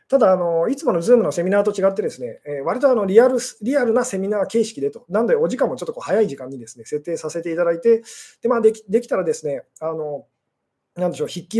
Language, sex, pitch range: Japanese, male, 175-275 Hz